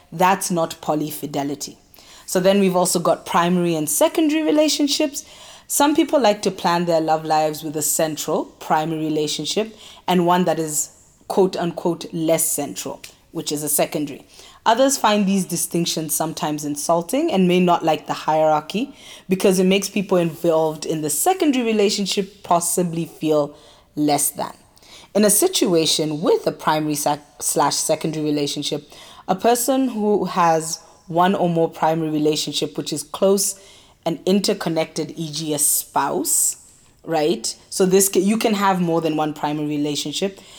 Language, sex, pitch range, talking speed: English, female, 155-205 Hz, 145 wpm